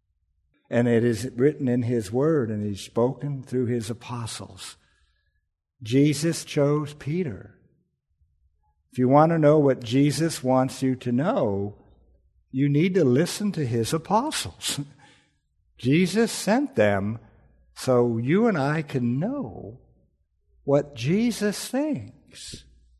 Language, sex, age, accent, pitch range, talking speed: English, male, 60-79, American, 115-170 Hz, 120 wpm